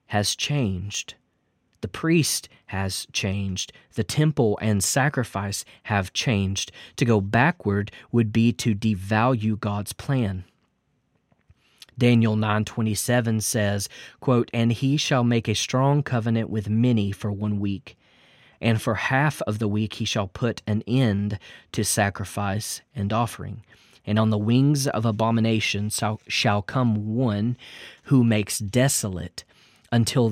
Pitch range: 105-125 Hz